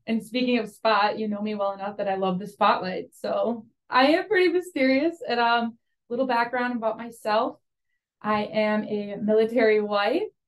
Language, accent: English, American